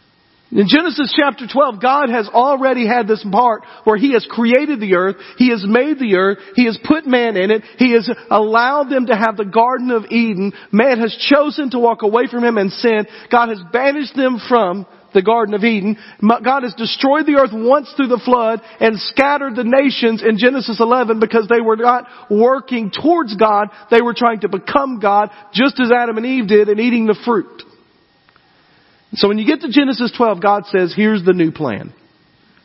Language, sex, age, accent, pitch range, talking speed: English, male, 40-59, American, 175-240 Hz, 200 wpm